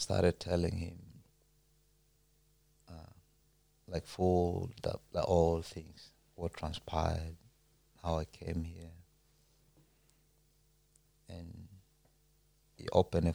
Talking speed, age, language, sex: 80 wpm, 30-49, English, male